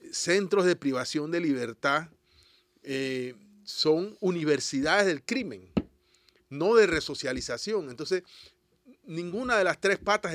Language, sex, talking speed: Spanish, male, 110 wpm